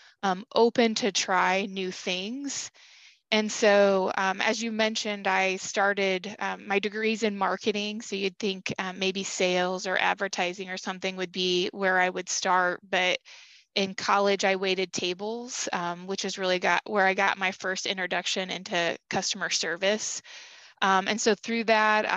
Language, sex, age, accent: English, female, 20-39, American